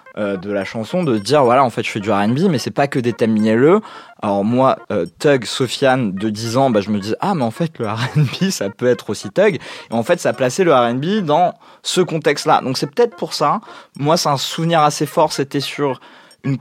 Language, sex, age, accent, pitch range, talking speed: French, male, 20-39, French, 110-140 Hz, 240 wpm